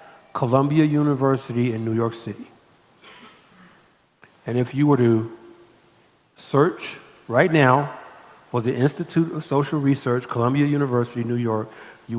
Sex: male